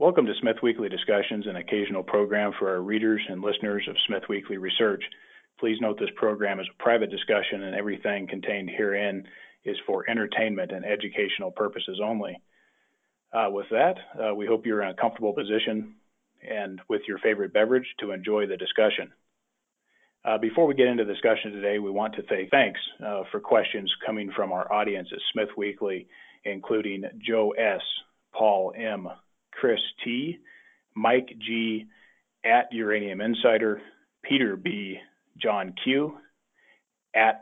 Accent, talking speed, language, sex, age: American, 155 wpm, English, male, 40-59